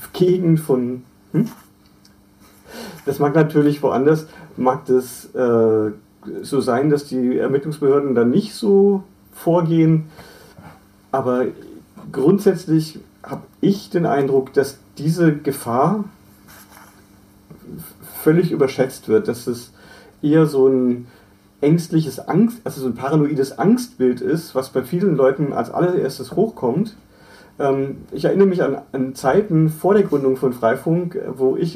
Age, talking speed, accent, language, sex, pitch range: 40-59, 120 wpm, German, German, male, 130-175 Hz